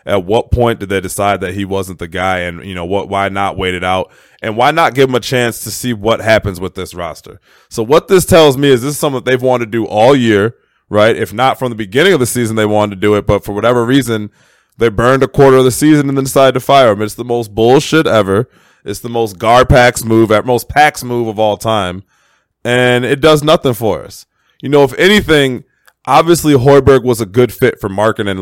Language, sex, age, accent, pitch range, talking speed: English, male, 20-39, American, 100-130 Hz, 245 wpm